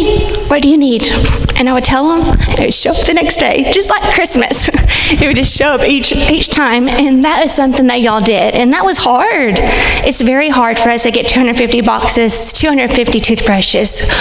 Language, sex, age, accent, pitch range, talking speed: English, female, 30-49, American, 235-300 Hz, 205 wpm